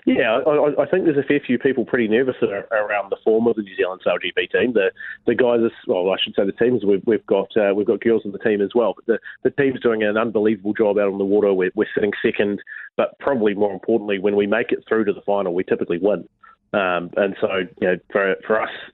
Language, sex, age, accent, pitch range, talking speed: English, male, 30-49, Australian, 100-120 Hz, 260 wpm